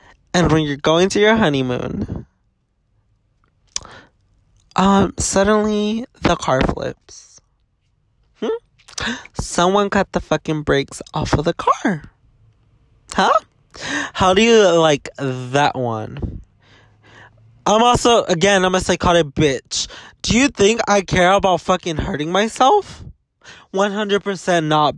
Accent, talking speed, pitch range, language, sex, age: American, 115 wpm, 140-200 Hz, English, male, 20-39